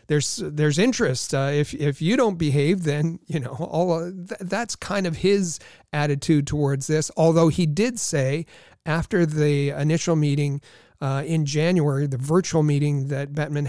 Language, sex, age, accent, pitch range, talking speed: English, male, 40-59, American, 140-165 Hz, 165 wpm